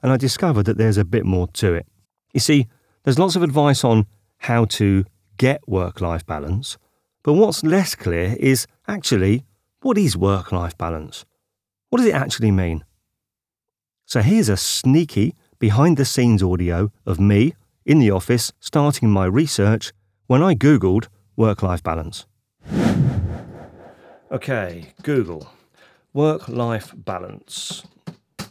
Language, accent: English, British